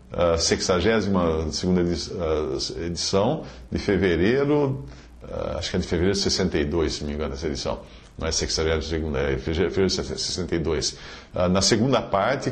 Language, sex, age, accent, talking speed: English, male, 50-69, Brazilian, 135 wpm